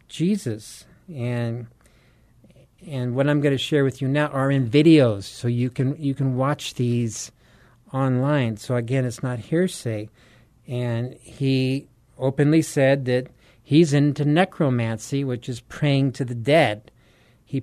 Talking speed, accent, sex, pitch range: 145 wpm, American, male, 125-150 Hz